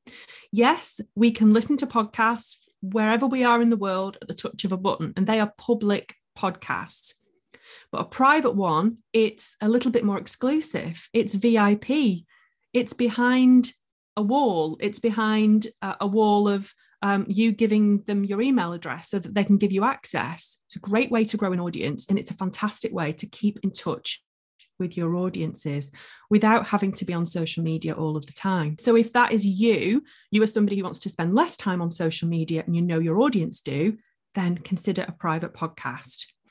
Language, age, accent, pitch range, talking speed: English, 30-49, British, 190-230 Hz, 190 wpm